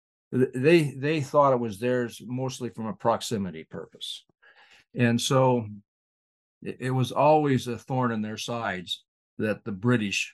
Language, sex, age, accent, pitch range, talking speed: English, male, 60-79, American, 105-145 Hz, 145 wpm